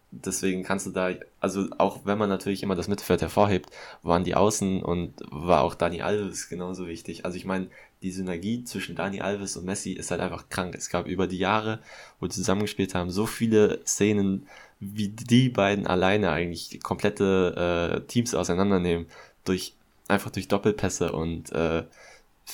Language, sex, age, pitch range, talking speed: German, male, 20-39, 90-105 Hz, 170 wpm